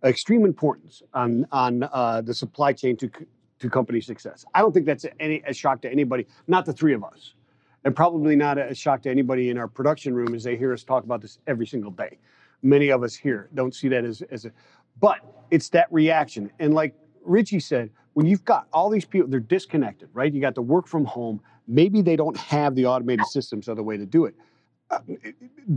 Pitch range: 125-155 Hz